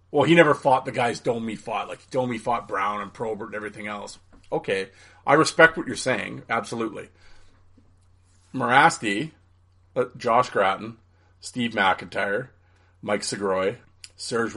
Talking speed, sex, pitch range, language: 135 wpm, male, 90-115 Hz, English